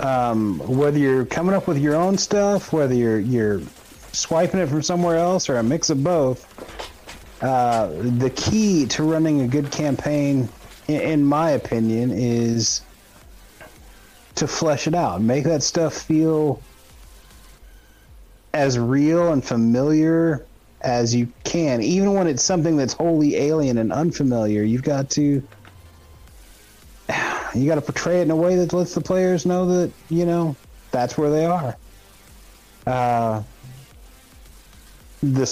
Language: English